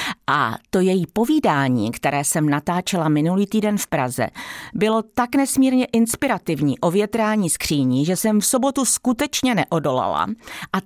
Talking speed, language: 140 wpm, Czech